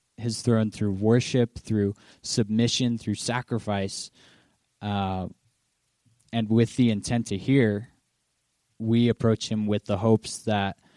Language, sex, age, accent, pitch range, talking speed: English, male, 20-39, American, 105-125 Hz, 120 wpm